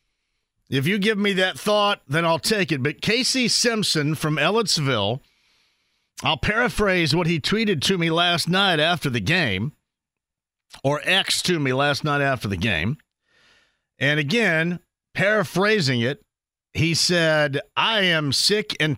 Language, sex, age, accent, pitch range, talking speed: English, male, 50-69, American, 150-200 Hz, 145 wpm